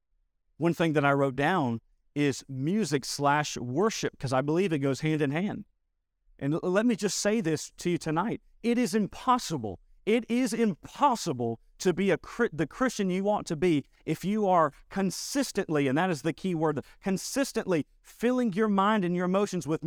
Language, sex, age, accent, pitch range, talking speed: English, male, 40-59, American, 135-205 Hz, 180 wpm